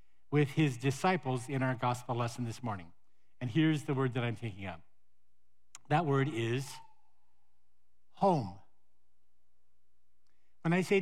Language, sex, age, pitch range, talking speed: English, male, 60-79, 115-160 Hz, 130 wpm